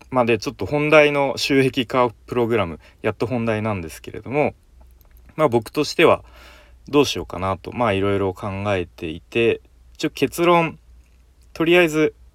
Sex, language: male, Japanese